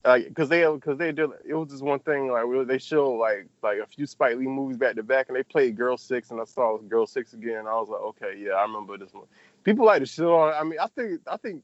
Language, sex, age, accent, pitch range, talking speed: English, male, 20-39, American, 120-165 Hz, 295 wpm